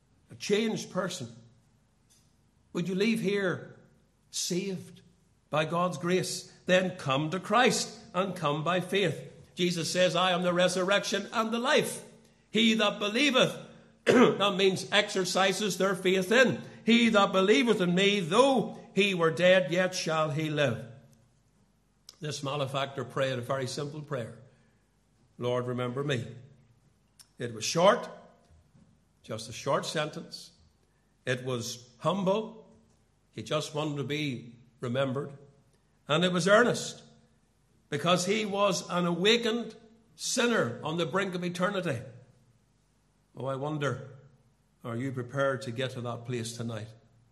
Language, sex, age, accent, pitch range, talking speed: English, male, 60-79, American, 125-190 Hz, 130 wpm